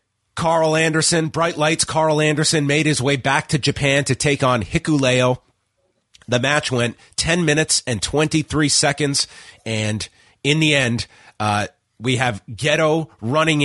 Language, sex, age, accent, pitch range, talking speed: English, male, 30-49, American, 115-155 Hz, 145 wpm